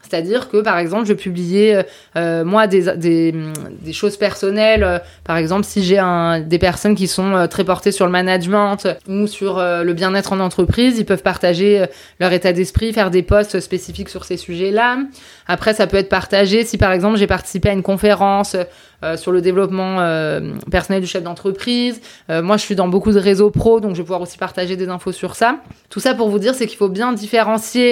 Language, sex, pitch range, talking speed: French, female, 185-225 Hz, 210 wpm